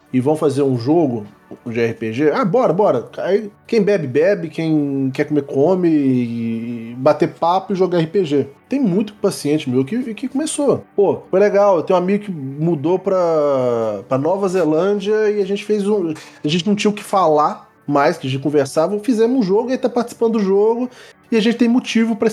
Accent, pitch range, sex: Brazilian, 125-200 Hz, male